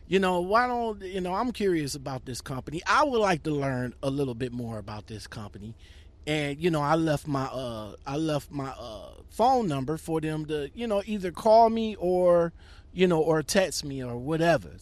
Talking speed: 210 wpm